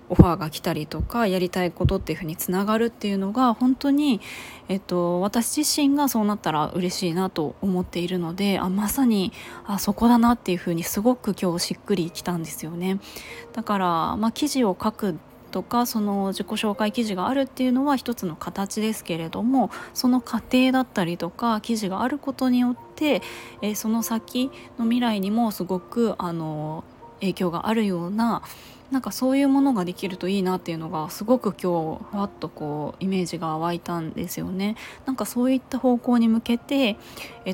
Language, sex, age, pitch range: Japanese, female, 20-39, 175-235 Hz